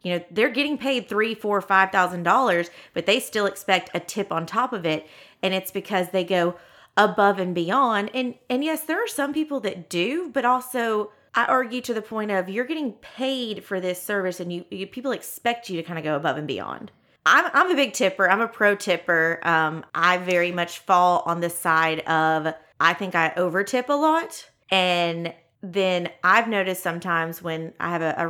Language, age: English, 30-49